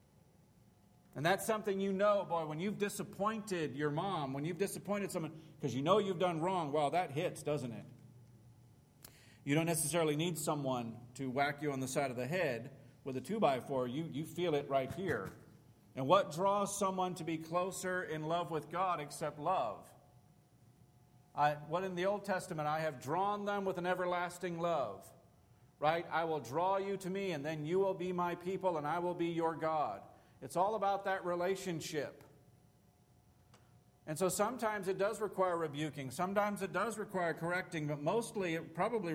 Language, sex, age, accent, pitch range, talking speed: English, male, 40-59, American, 145-185 Hz, 180 wpm